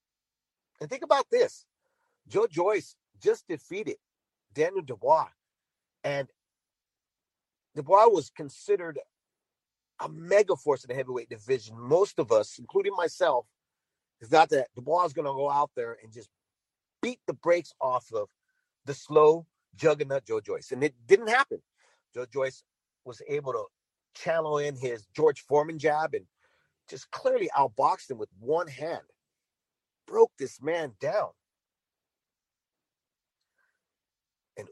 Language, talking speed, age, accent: English, 130 wpm, 40-59, American